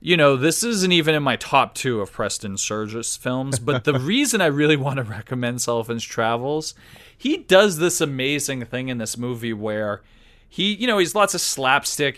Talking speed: 190 wpm